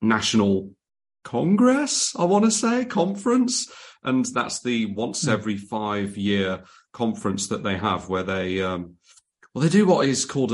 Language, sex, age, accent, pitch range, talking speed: English, male, 30-49, British, 95-120 Hz, 155 wpm